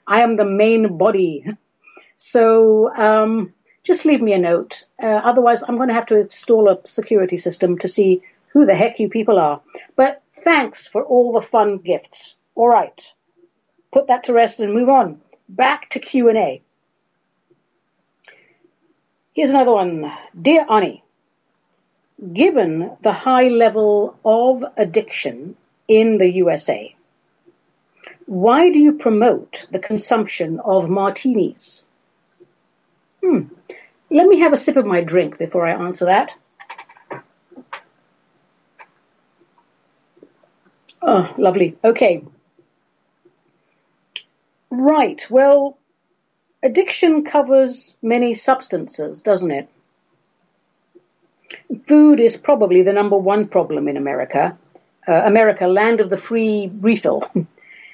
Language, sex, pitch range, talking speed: English, female, 190-265 Hz, 115 wpm